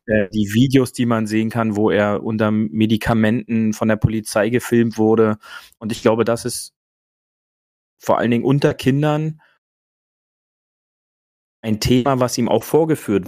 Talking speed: 140 wpm